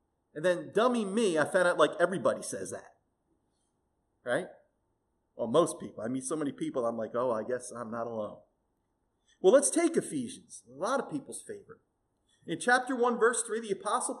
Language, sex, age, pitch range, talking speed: English, male, 30-49, 215-300 Hz, 185 wpm